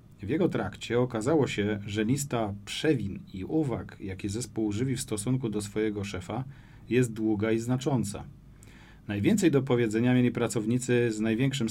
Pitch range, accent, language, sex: 105-125 Hz, native, Polish, male